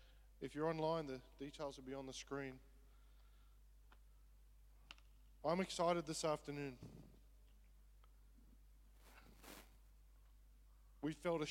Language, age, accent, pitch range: English, 20-39, Australian, 105-160 Hz